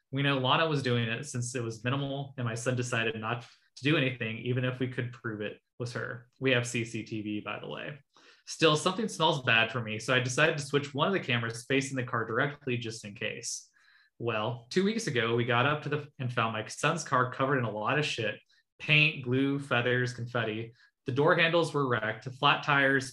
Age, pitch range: 20-39, 120-145 Hz